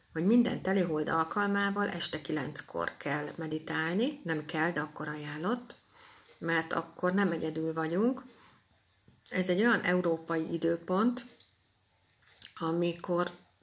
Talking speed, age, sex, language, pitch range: 105 wpm, 60-79, female, Hungarian, 160-185 Hz